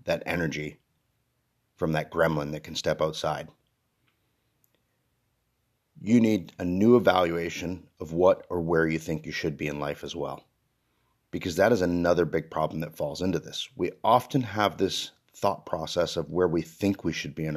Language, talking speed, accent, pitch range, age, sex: English, 175 wpm, American, 85-110 Hz, 40-59, male